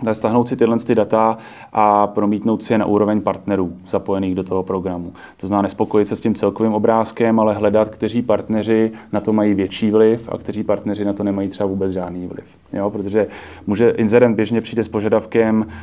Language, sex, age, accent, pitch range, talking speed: Czech, male, 30-49, native, 100-110 Hz, 190 wpm